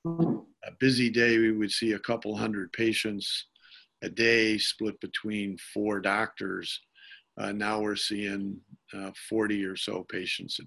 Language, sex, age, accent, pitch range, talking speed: English, male, 50-69, American, 105-115 Hz, 145 wpm